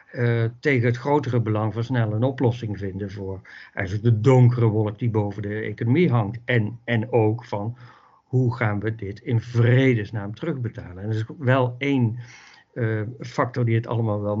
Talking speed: 170 wpm